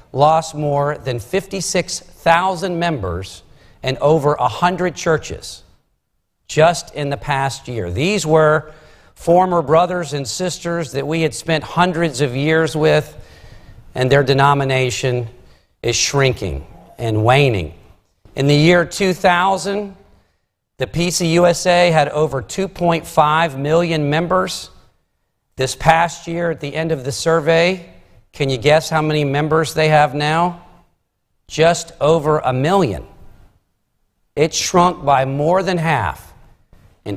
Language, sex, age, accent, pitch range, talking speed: English, male, 50-69, American, 130-170 Hz, 120 wpm